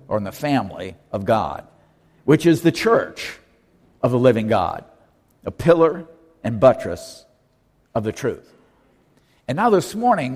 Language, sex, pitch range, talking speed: English, male, 110-155 Hz, 145 wpm